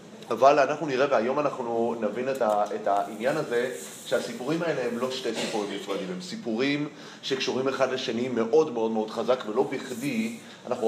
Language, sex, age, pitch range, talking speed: Hebrew, male, 30-49, 115-160 Hz, 165 wpm